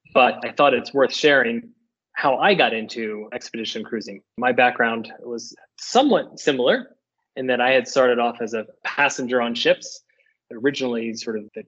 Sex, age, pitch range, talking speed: male, 20-39, 110-130 Hz, 165 wpm